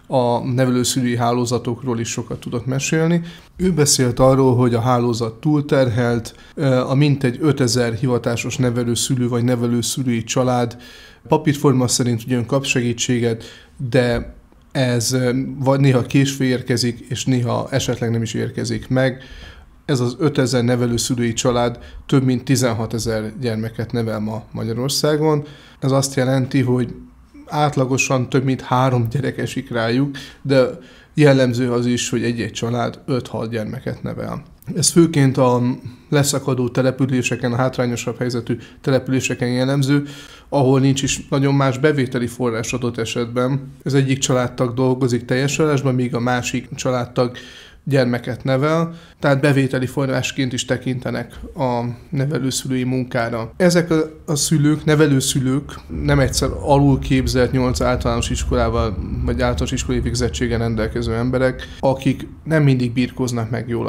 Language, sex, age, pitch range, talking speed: Hungarian, male, 30-49, 120-135 Hz, 125 wpm